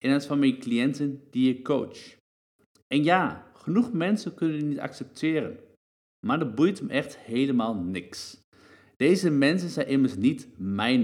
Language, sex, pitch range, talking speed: Dutch, male, 130-180 Hz, 160 wpm